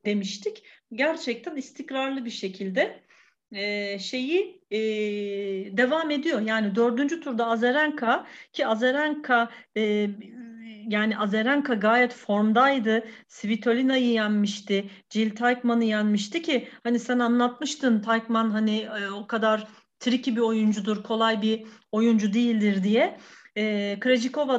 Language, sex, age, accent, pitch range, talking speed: Turkish, female, 40-59, native, 210-265 Hz, 110 wpm